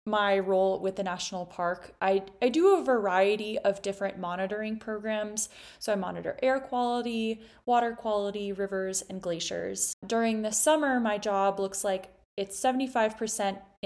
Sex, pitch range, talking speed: female, 185-225 Hz, 145 wpm